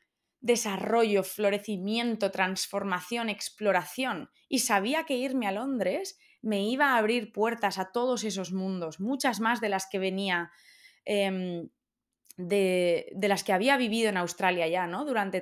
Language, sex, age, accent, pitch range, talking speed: Spanish, female, 20-39, Spanish, 190-240 Hz, 145 wpm